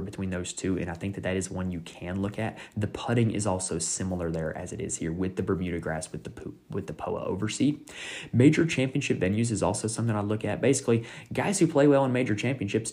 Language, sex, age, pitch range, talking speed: English, male, 20-39, 90-110 Hz, 240 wpm